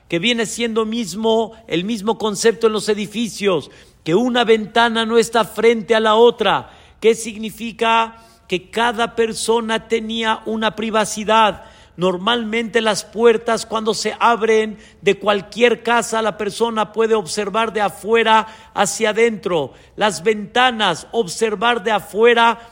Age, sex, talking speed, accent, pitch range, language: 50-69, male, 130 wpm, Mexican, 210-235 Hz, Spanish